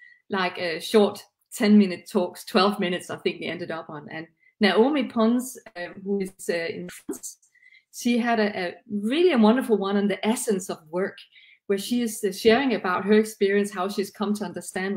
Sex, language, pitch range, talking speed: female, English, 185-225 Hz, 195 wpm